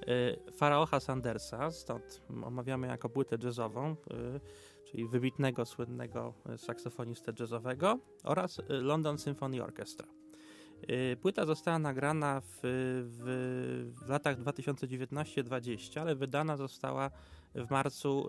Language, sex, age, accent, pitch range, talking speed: Polish, male, 20-39, native, 125-145 Hz, 95 wpm